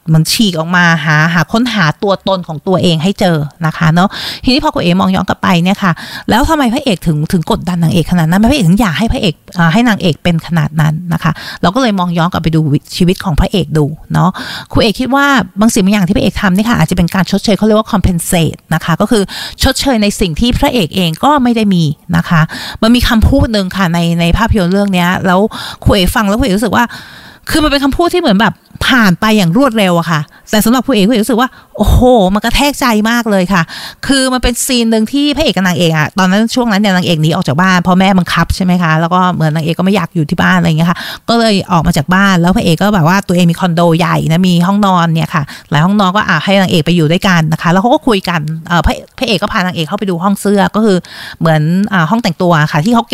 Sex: female